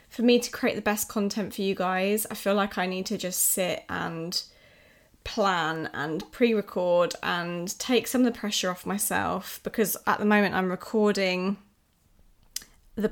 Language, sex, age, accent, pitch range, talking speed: English, female, 20-39, British, 185-220 Hz, 170 wpm